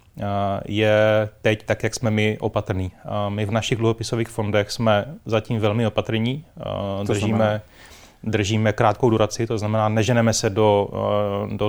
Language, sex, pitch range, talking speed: Czech, male, 105-115 Hz, 135 wpm